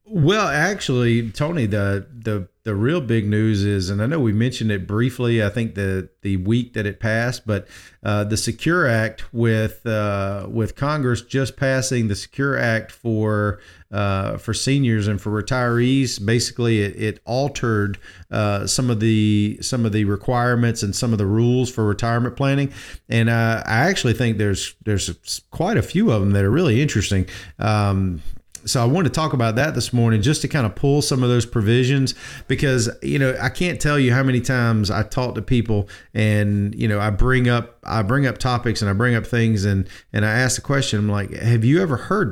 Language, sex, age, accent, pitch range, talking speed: English, male, 40-59, American, 105-130 Hz, 200 wpm